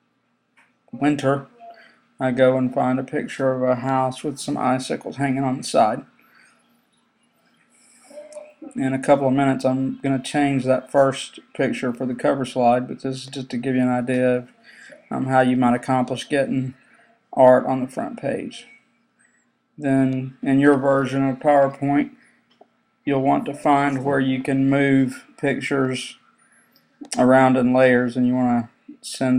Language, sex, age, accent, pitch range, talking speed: English, male, 40-59, American, 130-150 Hz, 155 wpm